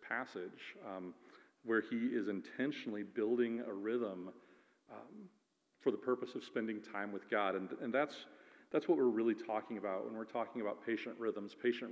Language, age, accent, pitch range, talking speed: English, 40-59, American, 105-125 Hz, 170 wpm